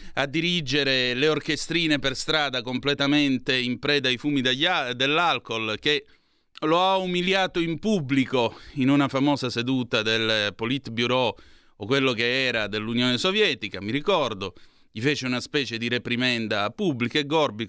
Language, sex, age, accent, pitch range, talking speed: Italian, male, 30-49, native, 120-155 Hz, 140 wpm